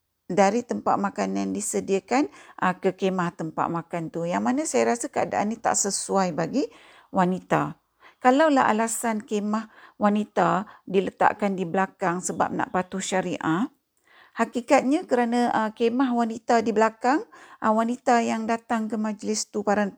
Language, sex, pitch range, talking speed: Malay, female, 185-245 Hz, 130 wpm